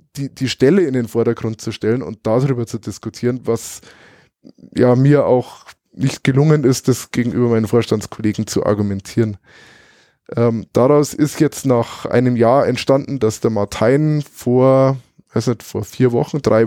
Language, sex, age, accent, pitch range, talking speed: German, male, 20-39, German, 110-140 Hz, 150 wpm